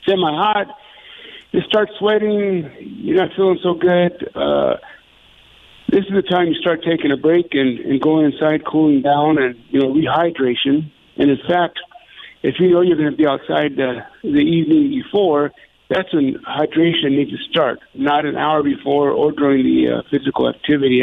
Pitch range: 145-195 Hz